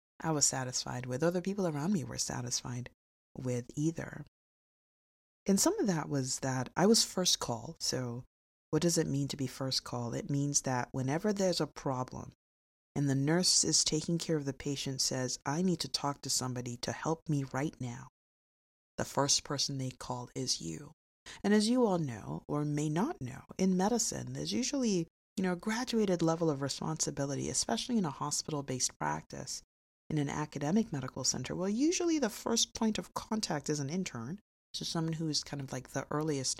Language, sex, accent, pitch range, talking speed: English, female, American, 130-210 Hz, 190 wpm